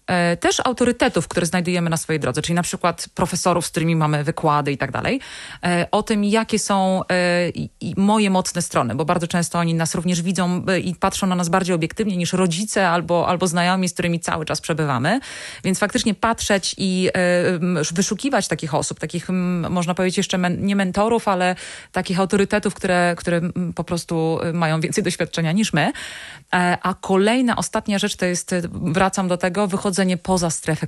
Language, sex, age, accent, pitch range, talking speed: Polish, female, 30-49, native, 175-220 Hz, 165 wpm